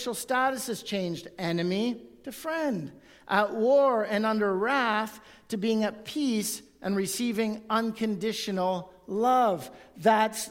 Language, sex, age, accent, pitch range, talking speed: English, male, 50-69, American, 180-225 Hz, 115 wpm